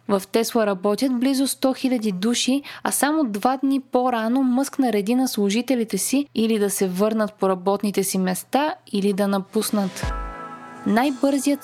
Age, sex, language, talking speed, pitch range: 20-39, female, Bulgarian, 150 wpm, 205-260 Hz